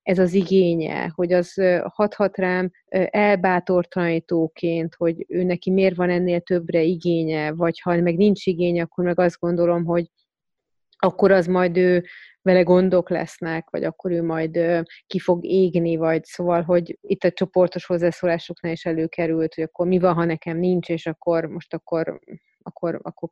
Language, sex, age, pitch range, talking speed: Hungarian, female, 30-49, 170-190 Hz, 160 wpm